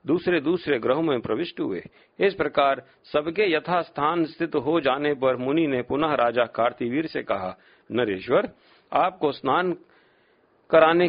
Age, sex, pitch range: 50-69, male, 130-165 Hz